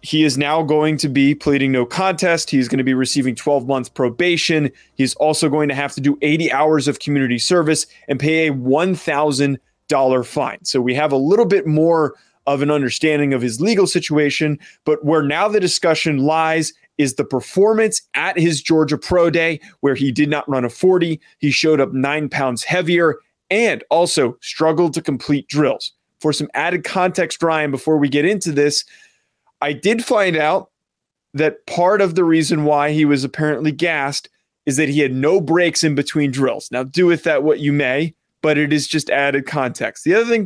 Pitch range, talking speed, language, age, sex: 140-165 Hz, 195 wpm, English, 20-39, male